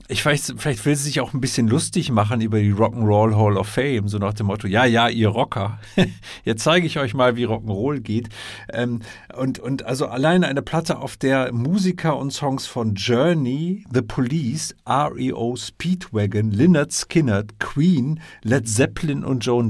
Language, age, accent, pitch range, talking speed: German, 50-69, German, 105-130 Hz, 175 wpm